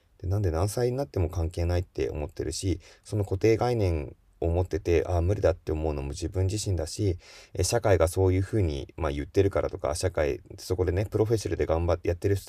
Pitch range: 80-105 Hz